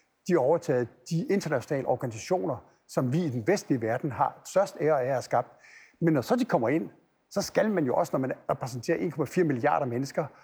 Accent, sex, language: native, male, Danish